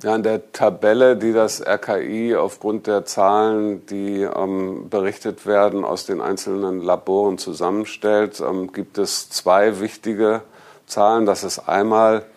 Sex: male